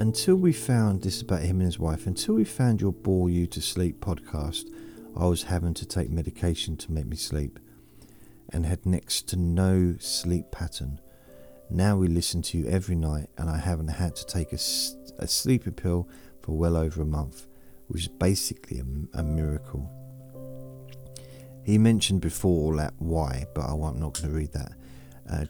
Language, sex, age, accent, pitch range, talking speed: English, male, 40-59, British, 75-95 Hz, 180 wpm